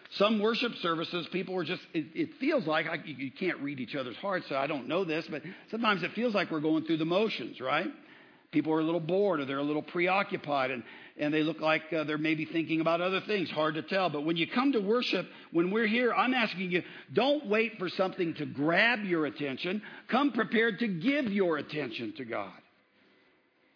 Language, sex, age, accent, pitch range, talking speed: English, male, 50-69, American, 160-230 Hz, 215 wpm